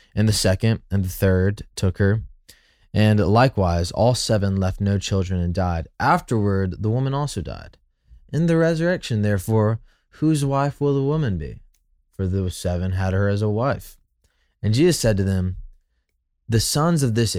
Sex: male